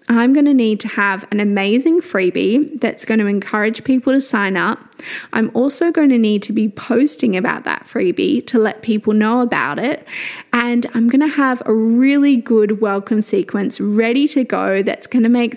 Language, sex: English, female